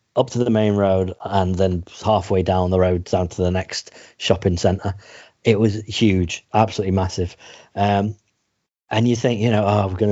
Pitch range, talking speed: 95-120 Hz, 185 wpm